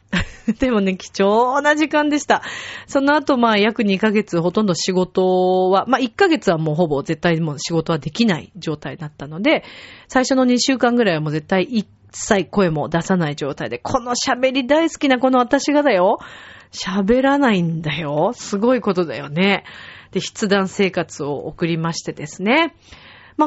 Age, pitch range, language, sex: 40-59, 165-260 Hz, Japanese, female